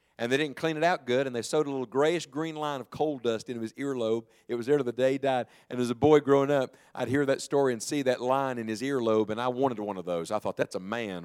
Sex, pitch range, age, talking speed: male, 110-135 Hz, 50-69, 305 wpm